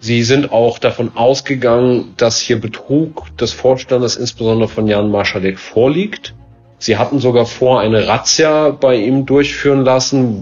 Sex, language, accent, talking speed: male, German, German, 145 wpm